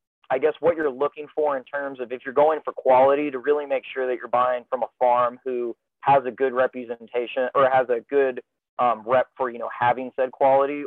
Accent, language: American, English